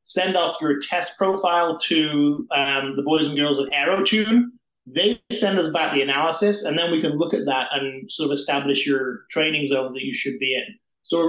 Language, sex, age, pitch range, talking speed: English, male, 30-49, 140-165 Hz, 215 wpm